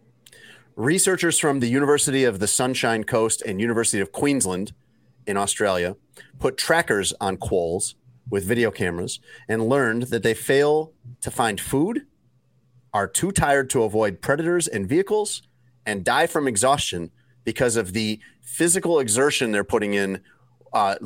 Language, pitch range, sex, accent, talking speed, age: English, 110-130 Hz, male, American, 140 wpm, 40-59